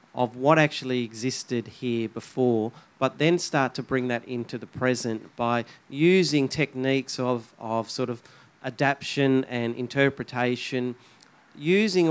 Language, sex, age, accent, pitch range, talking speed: English, male, 40-59, Australian, 120-135 Hz, 130 wpm